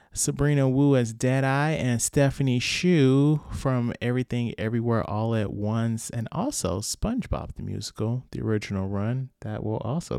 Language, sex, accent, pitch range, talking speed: English, male, American, 110-130 Hz, 145 wpm